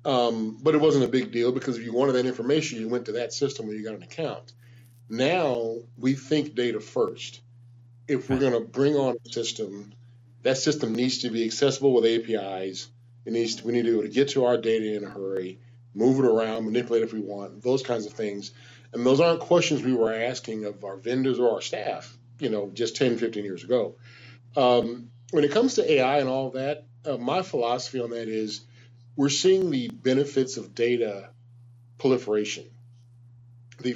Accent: American